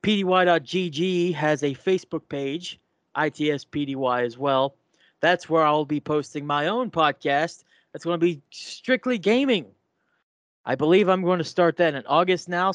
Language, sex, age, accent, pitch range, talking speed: English, male, 20-39, American, 135-175 Hz, 150 wpm